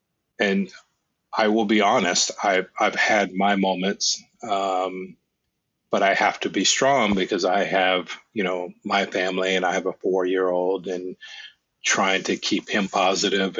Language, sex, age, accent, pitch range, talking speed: English, male, 30-49, American, 95-110 Hz, 155 wpm